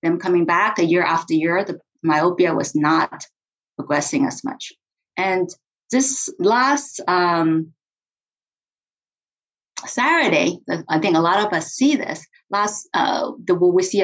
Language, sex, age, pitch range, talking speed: English, female, 30-49, 180-260 Hz, 135 wpm